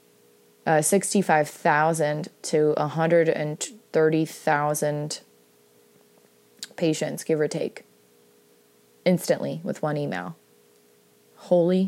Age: 30-49